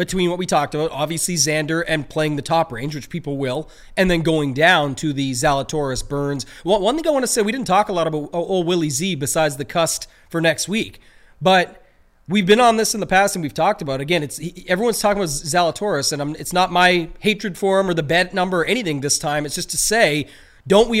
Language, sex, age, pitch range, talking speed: English, male, 30-49, 150-190 Hz, 240 wpm